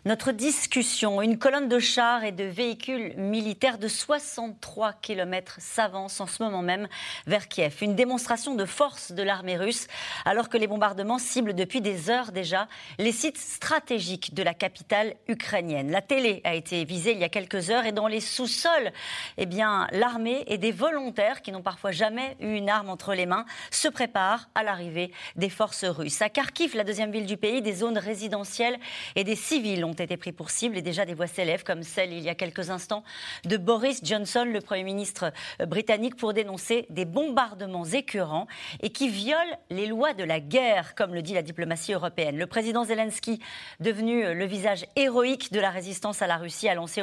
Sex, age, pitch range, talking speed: female, 40-59, 185-235 Hz, 195 wpm